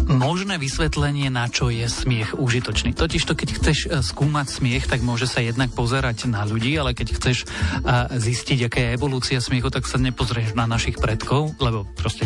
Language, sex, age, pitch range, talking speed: Slovak, male, 40-59, 115-135 Hz, 170 wpm